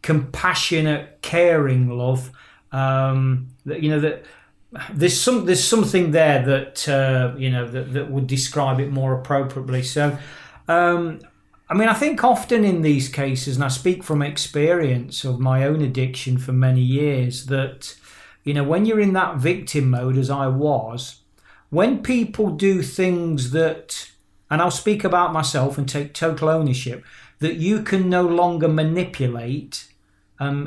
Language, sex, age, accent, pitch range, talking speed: English, male, 40-59, British, 130-165 Hz, 155 wpm